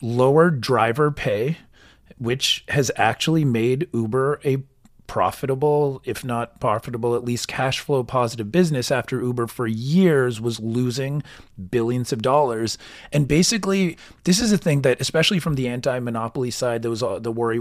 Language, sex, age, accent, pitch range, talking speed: English, male, 30-49, American, 120-145 Hz, 145 wpm